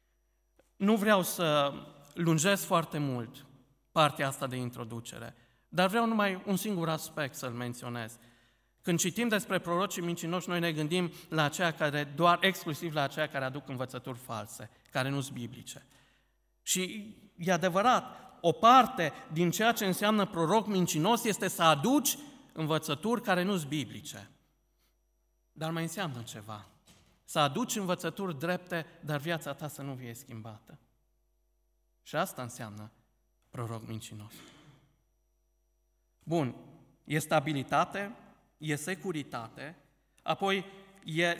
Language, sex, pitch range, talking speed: Romanian, male, 130-175 Hz, 125 wpm